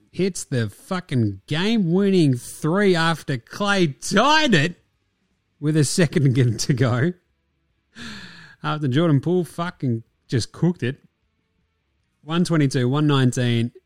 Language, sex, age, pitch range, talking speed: English, male, 30-49, 115-170 Hz, 130 wpm